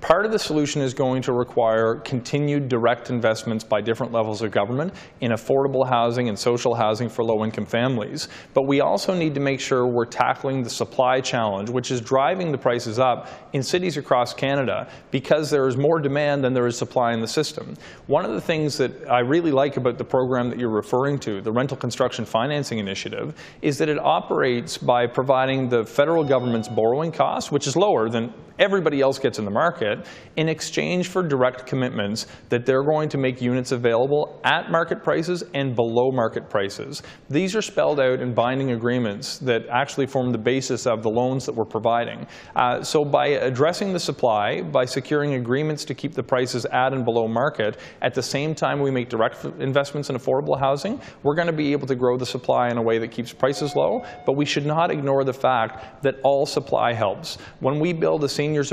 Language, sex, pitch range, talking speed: English, male, 120-145 Hz, 200 wpm